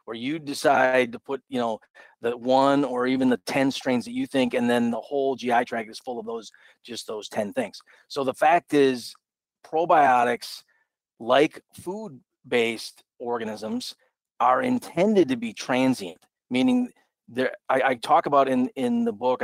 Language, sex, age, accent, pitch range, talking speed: English, male, 30-49, American, 120-150 Hz, 165 wpm